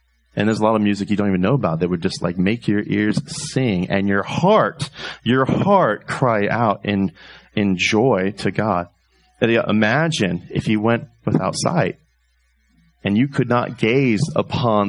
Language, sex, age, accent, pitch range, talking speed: English, male, 30-49, American, 90-125 Hz, 175 wpm